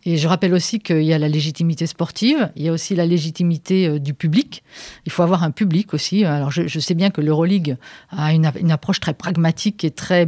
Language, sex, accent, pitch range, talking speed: French, female, French, 160-200 Hz, 230 wpm